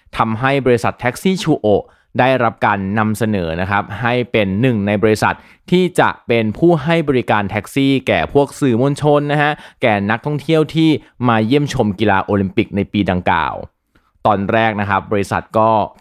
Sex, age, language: male, 20-39, Thai